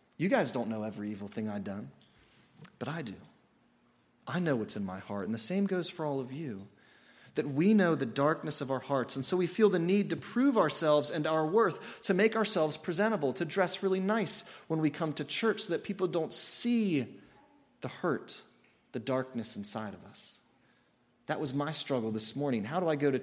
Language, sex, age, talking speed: English, male, 30-49, 210 wpm